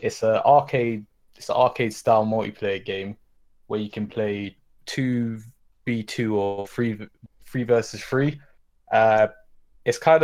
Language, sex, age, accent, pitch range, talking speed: English, male, 20-39, British, 110-130 Hz, 135 wpm